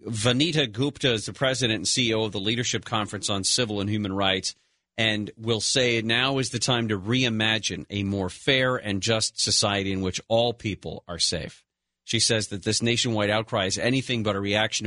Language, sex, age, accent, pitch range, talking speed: English, male, 40-59, American, 95-115 Hz, 195 wpm